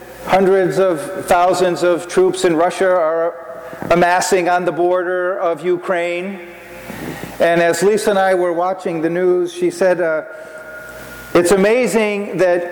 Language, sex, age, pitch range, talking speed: English, male, 40-59, 165-190 Hz, 135 wpm